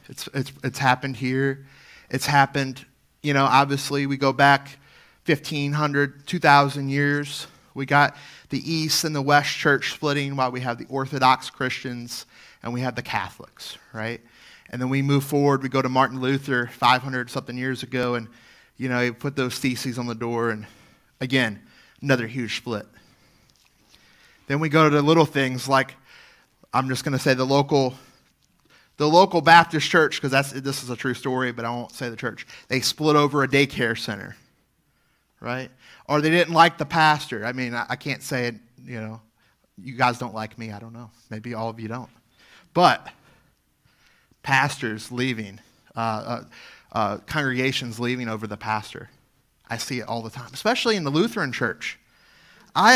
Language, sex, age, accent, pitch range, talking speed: English, male, 30-49, American, 120-145 Hz, 175 wpm